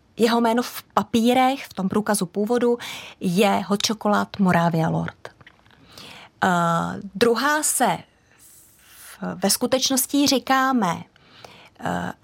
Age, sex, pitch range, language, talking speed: 30-49, female, 190-235 Hz, Czech, 105 wpm